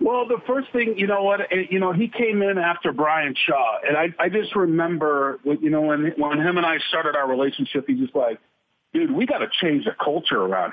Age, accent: 50-69, American